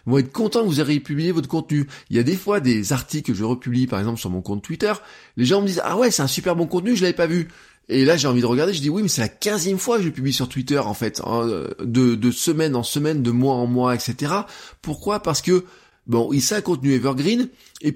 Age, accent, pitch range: 20-39, French, 125-180 Hz